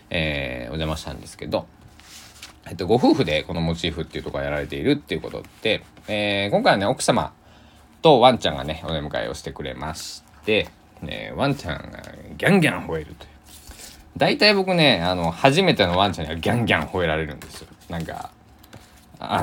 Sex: male